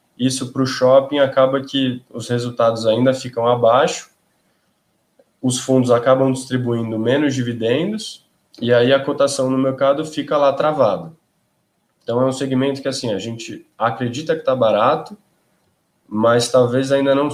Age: 20-39